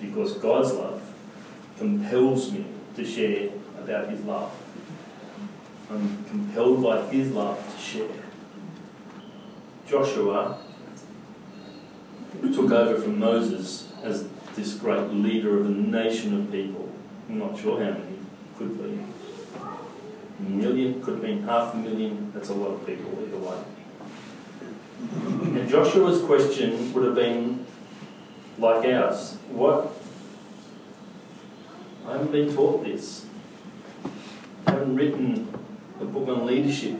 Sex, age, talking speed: male, 40-59, 120 wpm